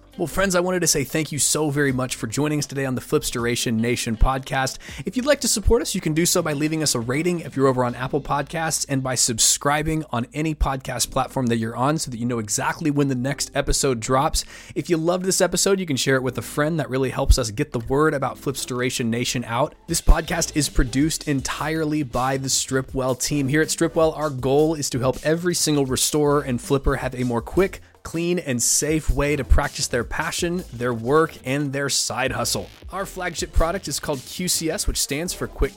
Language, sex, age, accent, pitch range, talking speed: English, male, 20-39, American, 130-160 Hz, 230 wpm